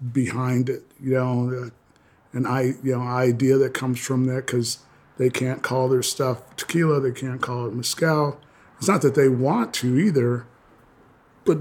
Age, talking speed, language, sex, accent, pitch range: 40-59, 170 wpm, English, male, American, 125-135 Hz